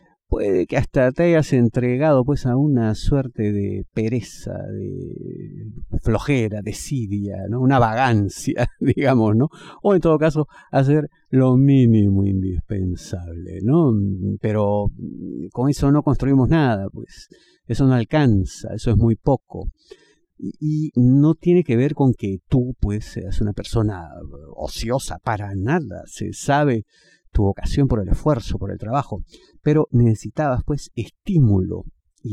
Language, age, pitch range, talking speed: Spanish, 50-69, 105-140 Hz, 135 wpm